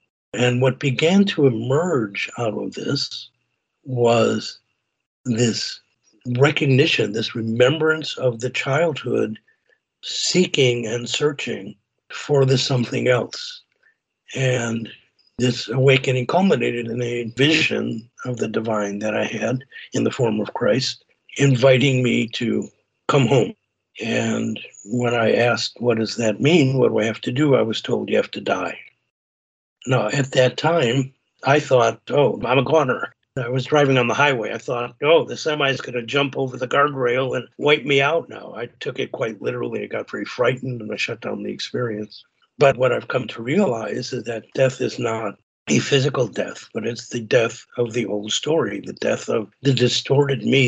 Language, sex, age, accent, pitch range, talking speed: English, male, 60-79, American, 120-140 Hz, 170 wpm